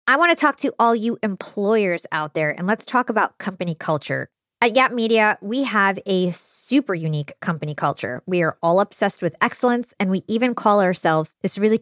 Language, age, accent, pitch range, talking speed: English, 20-39, American, 175-235 Hz, 200 wpm